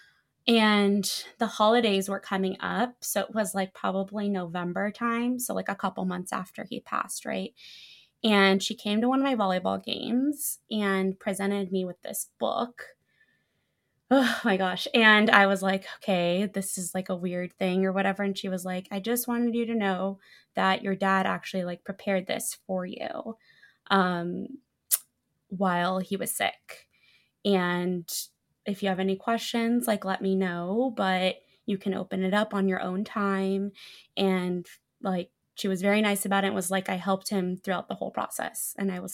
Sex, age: female, 20-39